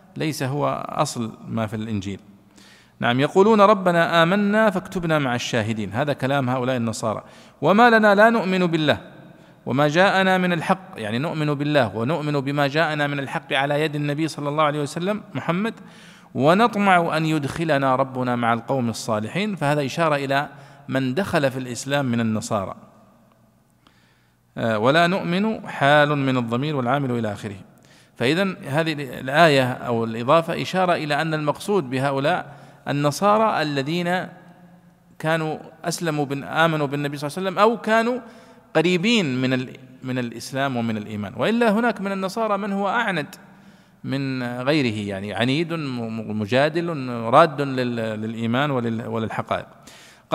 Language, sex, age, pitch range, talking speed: Arabic, male, 50-69, 125-180 Hz, 130 wpm